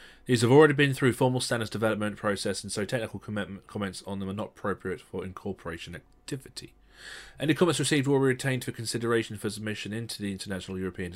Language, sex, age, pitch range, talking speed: English, male, 30-49, 95-115 Hz, 190 wpm